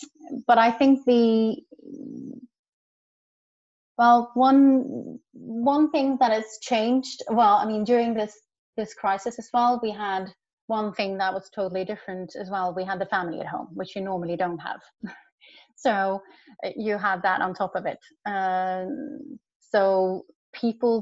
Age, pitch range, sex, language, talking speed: 30-49, 190-245 Hz, female, English, 150 wpm